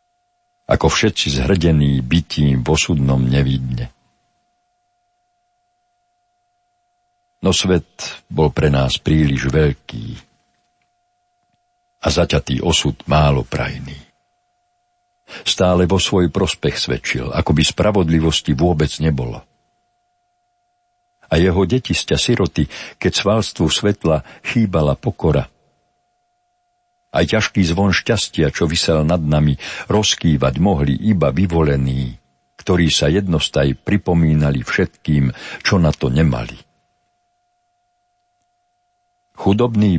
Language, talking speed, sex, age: Slovak, 90 wpm, male, 60-79